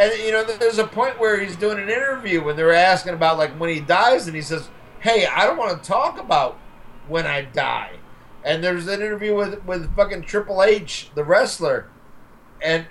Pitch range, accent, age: 150-210 Hz, American, 50-69